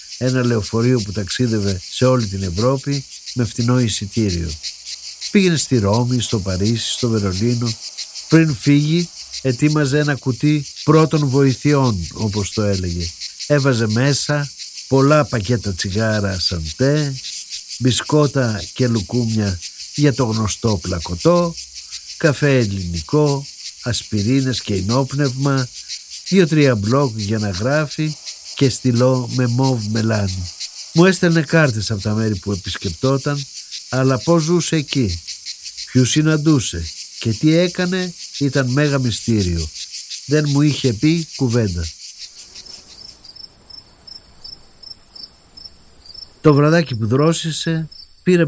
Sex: male